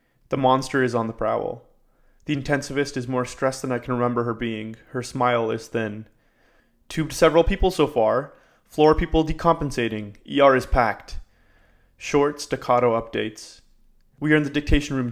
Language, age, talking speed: English, 20-39, 165 wpm